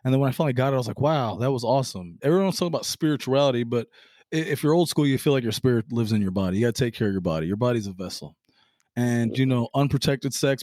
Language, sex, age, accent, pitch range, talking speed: English, male, 20-39, American, 110-145 Hz, 275 wpm